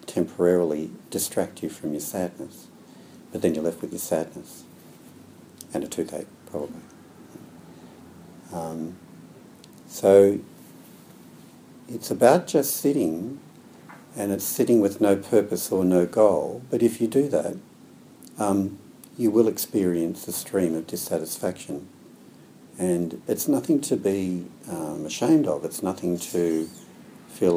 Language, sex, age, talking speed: English, male, 60-79, 125 wpm